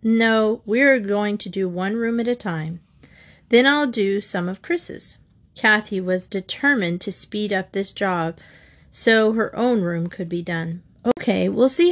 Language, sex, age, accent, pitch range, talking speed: English, female, 30-49, American, 190-250 Hz, 175 wpm